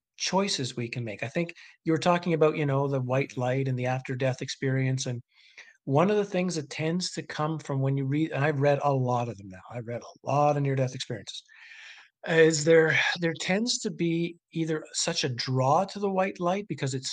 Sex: male